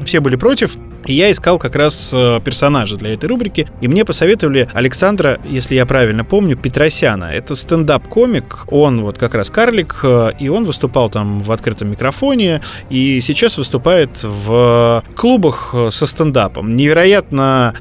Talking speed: 140 wpm